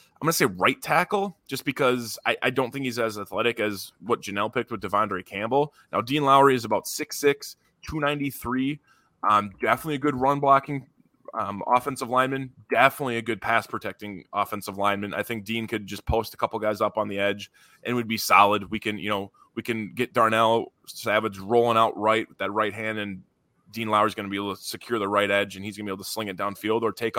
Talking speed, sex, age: 220 wpm, male, 20-39